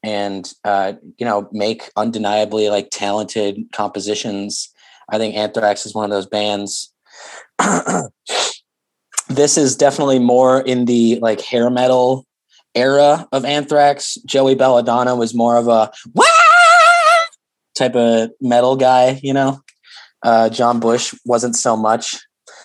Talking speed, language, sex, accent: 125 wpm, English, male, American